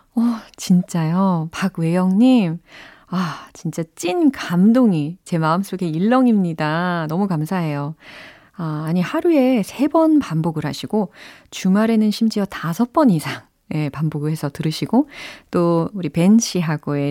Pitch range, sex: 160-235 Hz, female